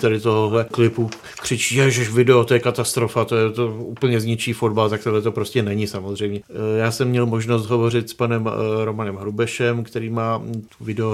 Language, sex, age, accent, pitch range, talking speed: Czech, male, 40-59, native, 110-125 Hz, 180 wpm